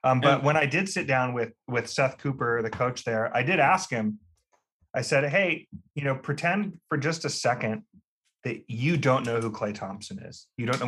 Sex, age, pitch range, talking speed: male, 30-49, 115-135 Hz, 215 wpm